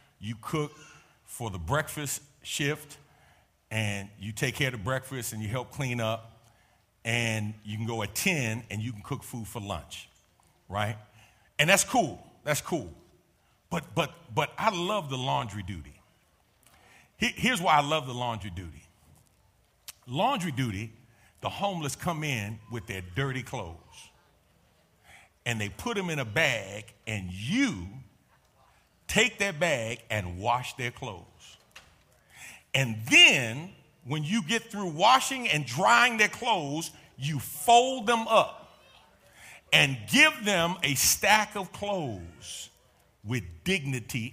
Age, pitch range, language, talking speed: 40-59, 110-180 Hz, English, 135 wpm